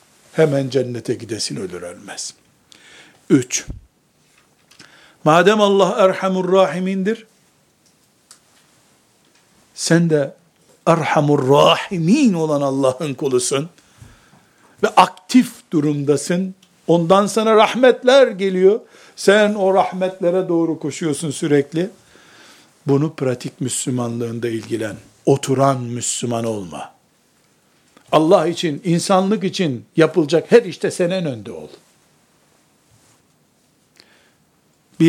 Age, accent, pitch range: 60-79, native, 150-195 Hz